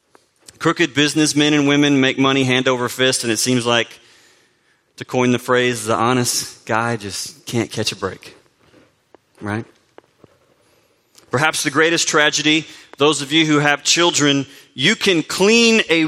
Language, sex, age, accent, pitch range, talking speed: English, male, 30-49, American, 125-155 Hz, 150 wpm